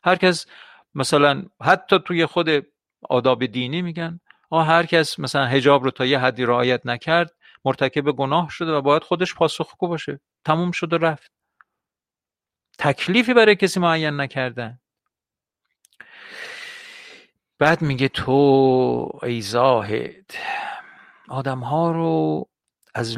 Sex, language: male, Persian